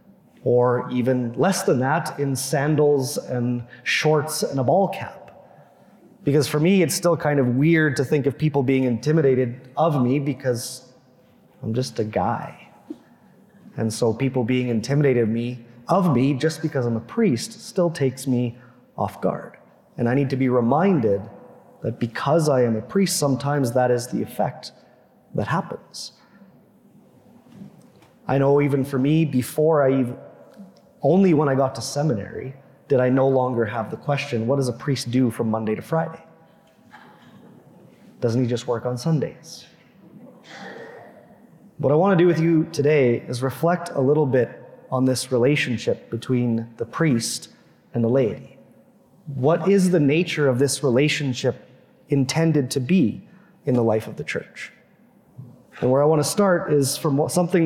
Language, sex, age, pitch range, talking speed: English, male, 30-49, 125-160 Hz, 160 wpm